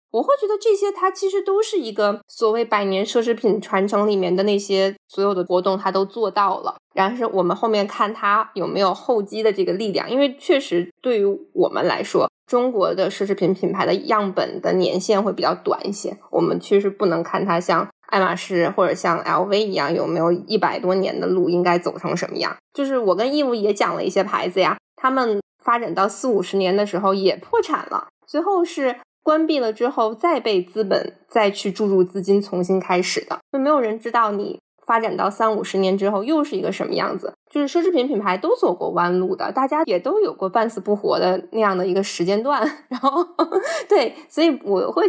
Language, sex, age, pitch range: Chinese, female, 20-39, 190-260 Hz